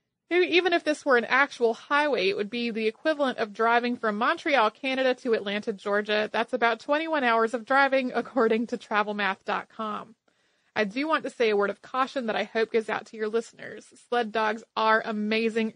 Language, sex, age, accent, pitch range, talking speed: English, female, 30-49, American, 220-250 Hz, 190 wpm